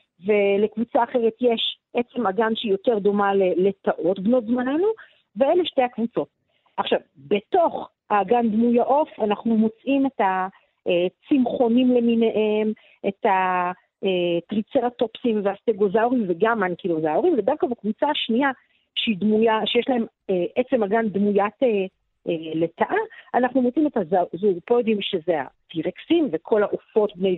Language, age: Hebrew, 40-59